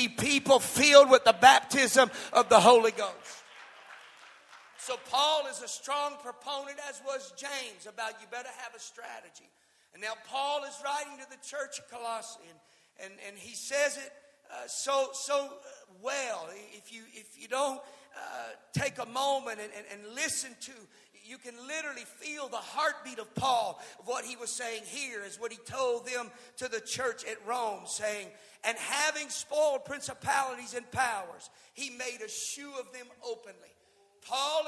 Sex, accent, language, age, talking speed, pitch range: male, American, English, 40-59, 165 wpm, 220-280 Hz